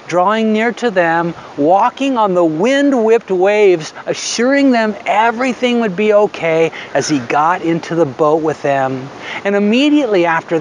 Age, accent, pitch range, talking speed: 50-69, American, 170-230 Hz, 145 wpm